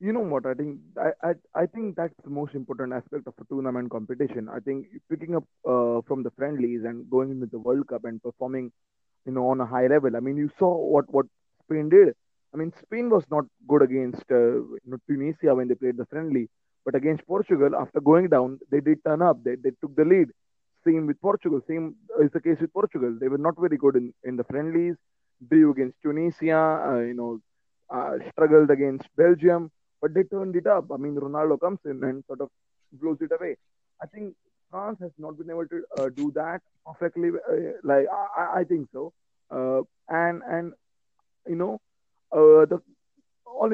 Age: 20-39